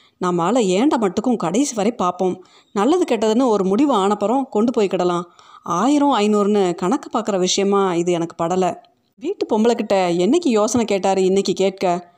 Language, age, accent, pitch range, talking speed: Tamil, 30-49, native, 175-230 Hz, 145 wpm